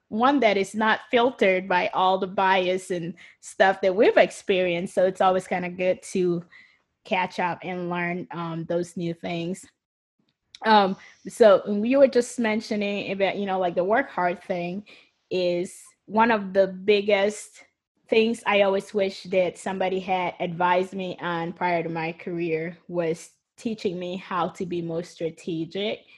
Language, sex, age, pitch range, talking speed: English, female, 20-39, 170-195 Hz, 160 wpm